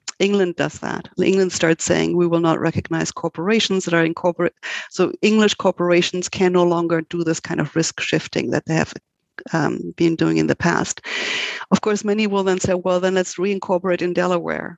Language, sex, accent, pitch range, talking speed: English, female, German, 170-200 Hz, 190 wpm